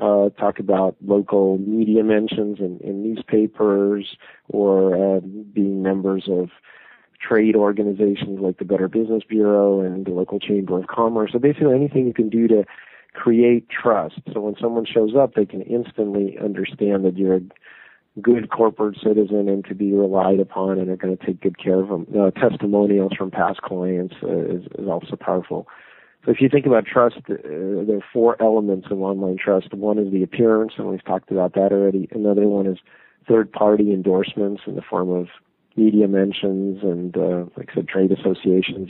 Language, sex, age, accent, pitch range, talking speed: English, male, 40-59, American, 95-105 Hz, 180 wpm